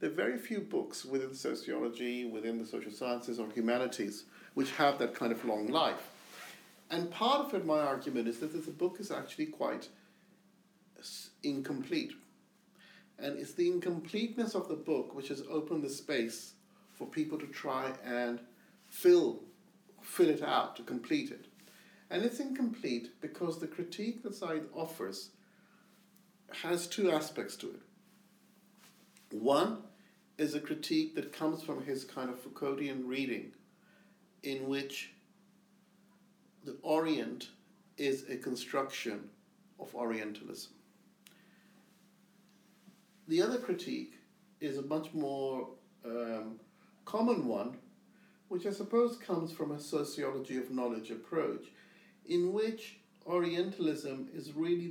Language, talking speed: English, 130 wpm